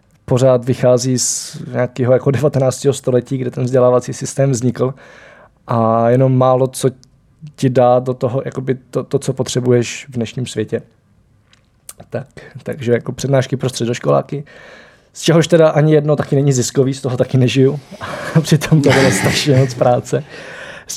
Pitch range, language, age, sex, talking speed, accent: 120-140 Hz, Czech, 20-39, male, 150 wpm, native